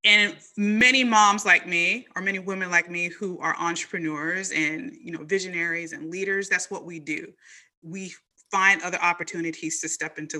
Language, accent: English, American